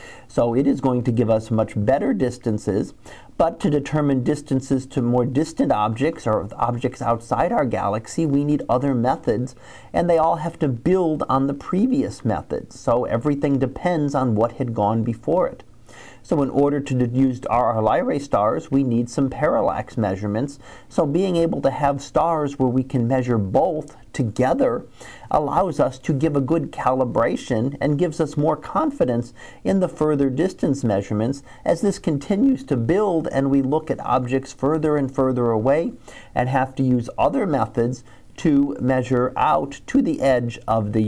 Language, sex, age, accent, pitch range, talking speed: English, male, 40-59, American, 120-155 Hz, 170 wpm